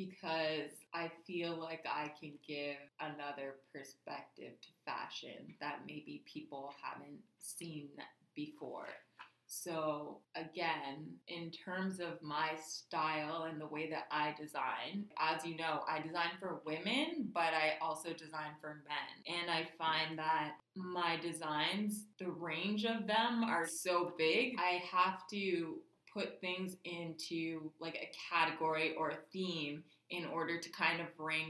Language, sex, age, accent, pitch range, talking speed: English, female, 20-39, American, 155-180 Hz, 140 wpm